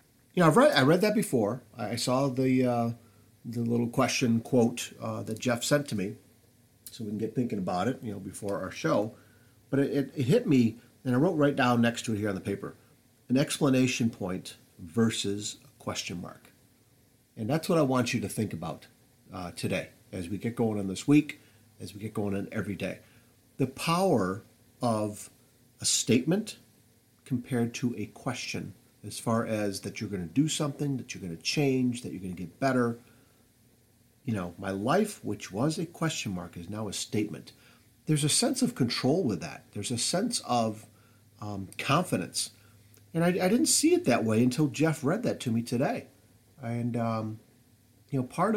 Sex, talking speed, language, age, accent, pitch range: male, 195 wpm, English, 50-69, American, 110-135 Hz